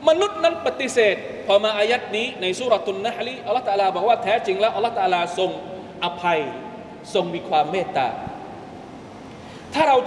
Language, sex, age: Thai, male, 20-39